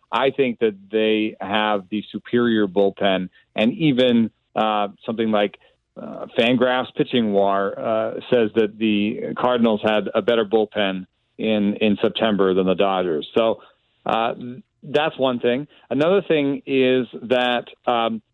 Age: 40-59